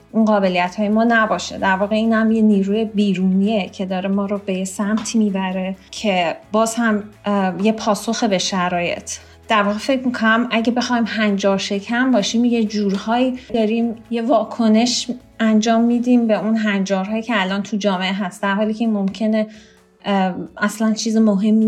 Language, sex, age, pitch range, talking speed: Persian, female, 30-49, 190-220 Hz, 160 wpm